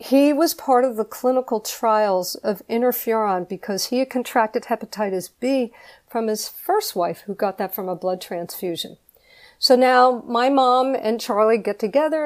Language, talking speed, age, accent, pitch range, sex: English, 165 wpm, 50-69, American, 195-235 Hz, female